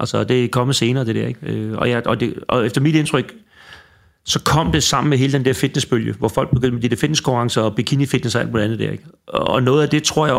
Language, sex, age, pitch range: Danish, male, 30-49, 115-145 Hz